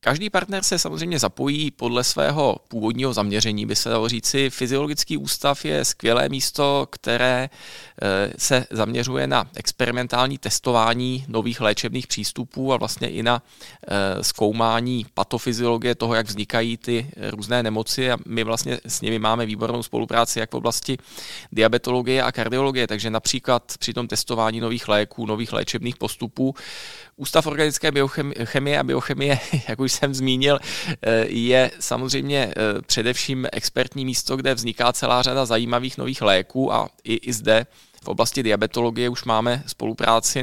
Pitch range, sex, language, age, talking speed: 115-130 Hz, male, Czech, 20-39, 135 wpm